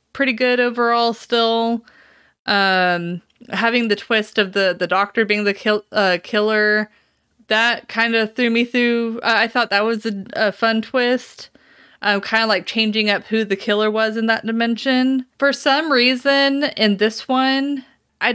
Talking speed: 165 wpm